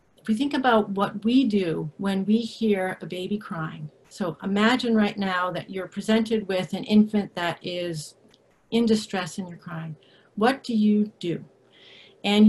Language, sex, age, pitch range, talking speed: English, female, 40-59, 180-220 Hz, 170 wpm